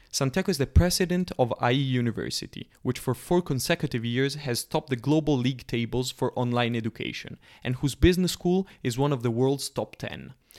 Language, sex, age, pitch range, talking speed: Italian, male, 20-39, 125-155 Hz, 180 wpm